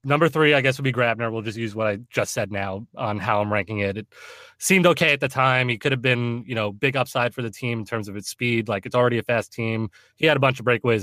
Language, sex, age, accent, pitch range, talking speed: English, male, 20-39, American, 105-130 Hz, 295 wpm